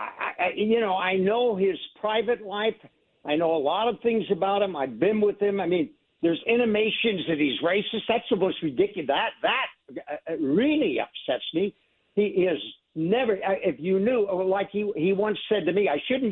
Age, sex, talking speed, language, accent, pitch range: 60-79, male, 190 wpm, English, American, 165-225 Hz